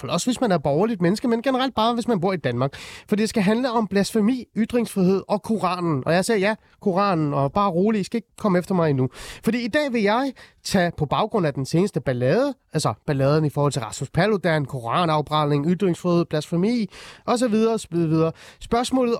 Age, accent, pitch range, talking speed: 30-49, native, 155-220 Hz, 195 wpm